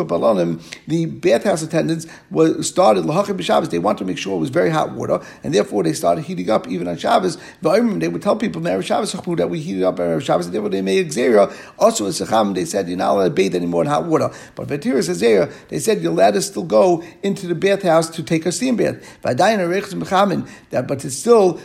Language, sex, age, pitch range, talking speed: English, male, 50-69, 155-180 Hz, 200 wpm